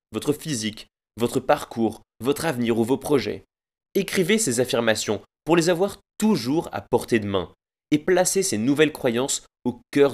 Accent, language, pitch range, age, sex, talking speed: French, French, 110-160 Hz, 20-39, male, 160 wpm